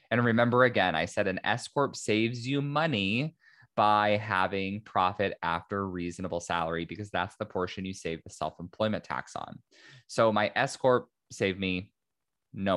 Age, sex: 20-39, male